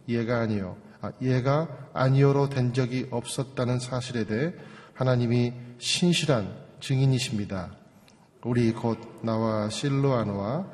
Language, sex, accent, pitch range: Korean, male, native, 115-140 Hz